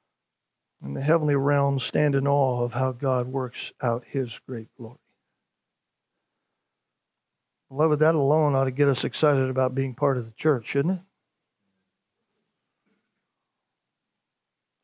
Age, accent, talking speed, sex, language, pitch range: 50-69, American, 135 wpm, male, English, 135-155 Hz